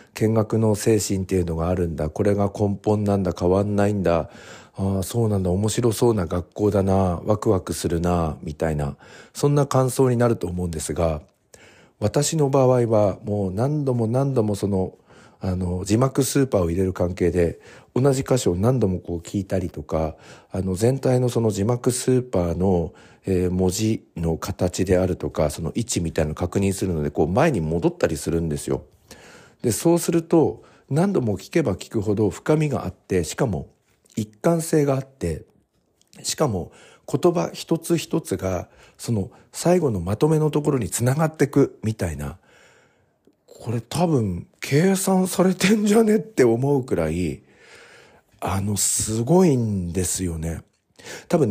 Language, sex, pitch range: Japanese, male, 90-130 Hz